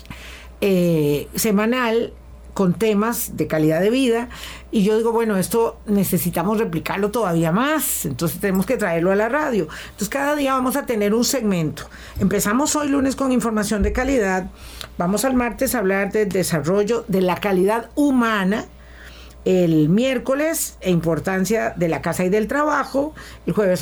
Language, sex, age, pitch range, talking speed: Spanish, female, 50-69, 180-245 Hz, 155 wpm